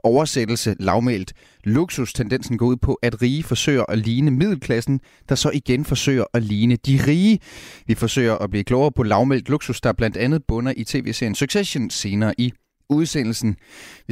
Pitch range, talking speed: 115-140 Hz, 165 wpm